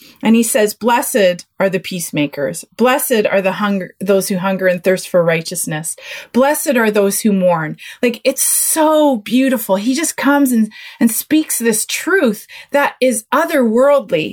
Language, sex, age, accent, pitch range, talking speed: English, female, 30-49, American, 215-280 Hz, 160 wpm